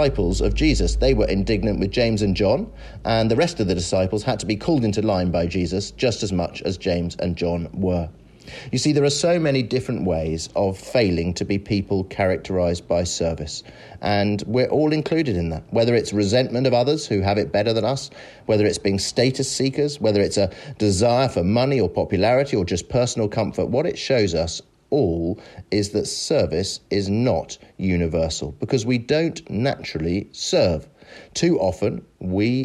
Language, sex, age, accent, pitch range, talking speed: English, male, 30-49, British, 90-125 Hz, 185 wpm